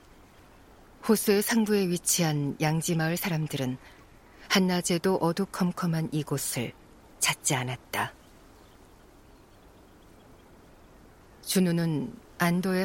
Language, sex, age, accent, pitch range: Korean, female, 40-59, native, 135-175 Hz